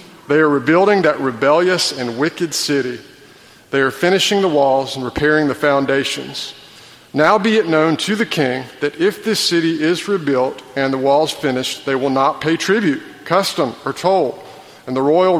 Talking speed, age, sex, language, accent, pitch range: 175 wpm, 50-69, male, English, American, 135-170 Hz